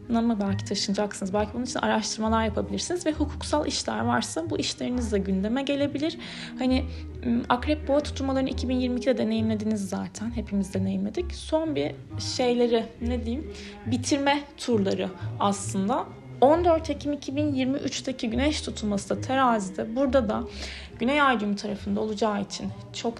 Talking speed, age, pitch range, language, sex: 125 wpm, 30-49, 190-245 Hz, Turkish, female